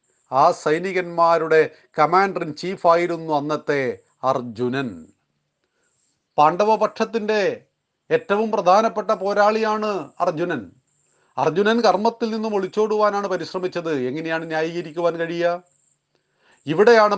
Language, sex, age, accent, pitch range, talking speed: Malayalam, male, 30-49, native, 155-205 Hz, 75 wpm